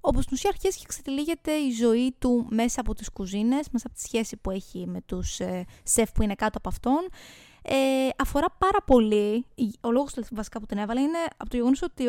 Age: 20-39